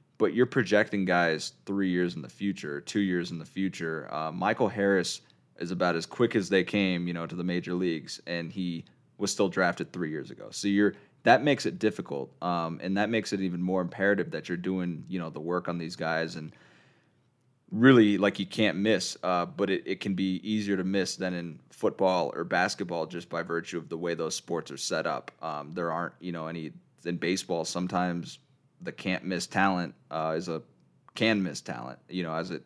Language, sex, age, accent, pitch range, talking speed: English, male, 20-39, American, 85-100 Hz, 215 wpm